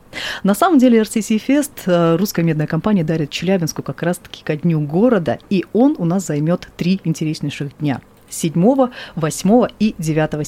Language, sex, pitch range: Russian, female, 160-210 Hz